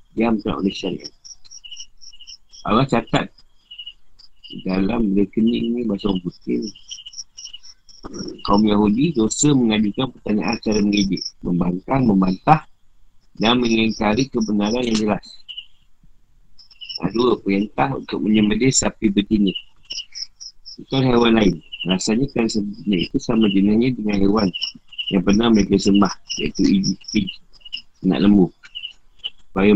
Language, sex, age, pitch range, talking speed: Malay, male, 50-69, 95-115 Hz, 95 wpm